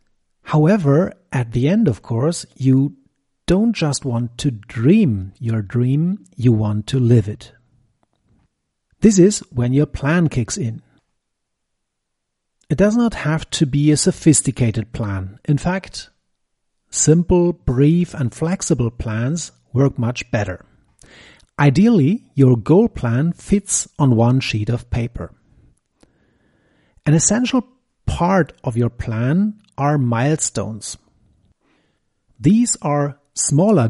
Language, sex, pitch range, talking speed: English, male, 120-180 Hz, 115 wpm